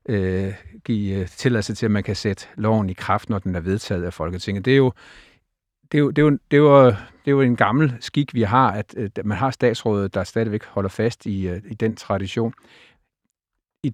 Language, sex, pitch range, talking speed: Danish, male, 100-125 Hz, 200 wpm